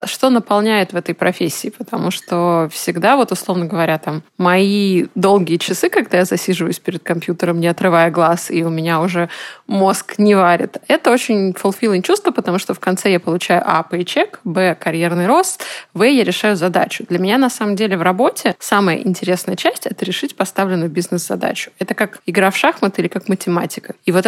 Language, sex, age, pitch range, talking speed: Russian, female, 20-39, 180-205 Hz, 185 wpm